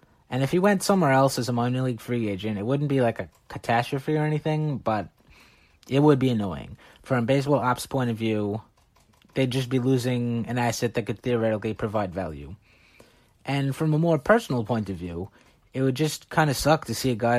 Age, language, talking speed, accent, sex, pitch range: 30-49, English, 210 wpm, American, male, 115-135 Hz